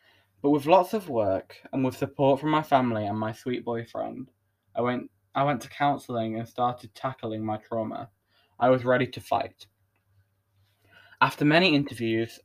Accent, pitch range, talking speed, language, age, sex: British, 100-135 Hz, 165 wpm, English, 10-29, male